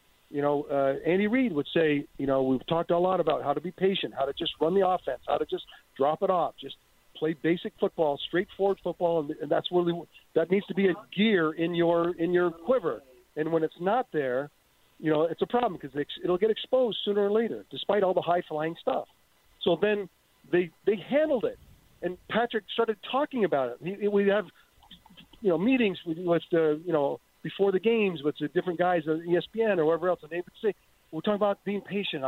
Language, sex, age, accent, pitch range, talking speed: English, male, 50-69, American, 165-220 Hz, 215 wpm